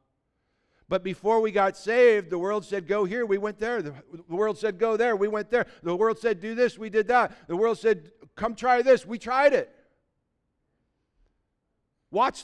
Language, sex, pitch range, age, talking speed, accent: English, male, 140-200 Hz, 50-69, 190 wpm, American